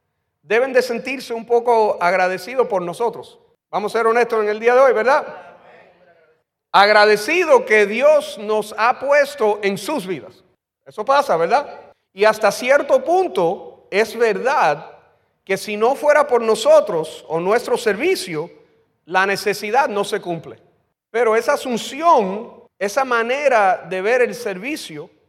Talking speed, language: 140 wpm, Spanish